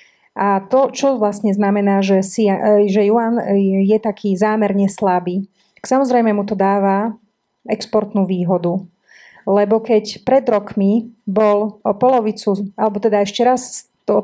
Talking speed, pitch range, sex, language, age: 140 wpm, 200-235 Hz, female, Slovak, 30-49